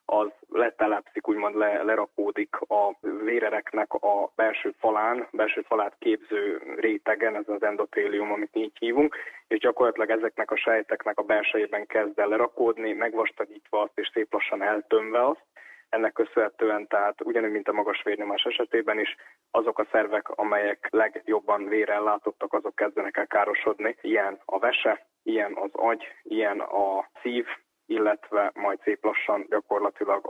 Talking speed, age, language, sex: 145 wpm, 20-39, Hungarian, male